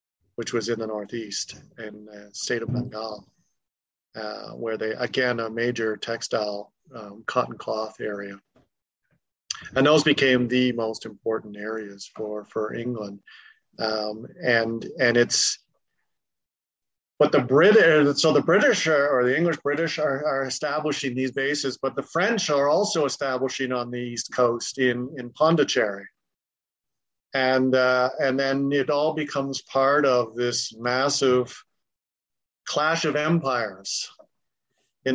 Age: 40-59